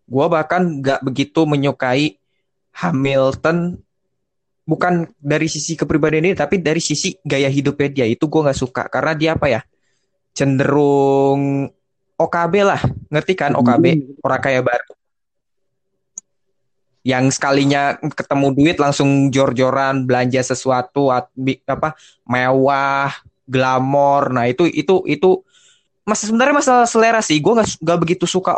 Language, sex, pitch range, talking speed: Indonesian, male, 130-165 Hz, 125 wpm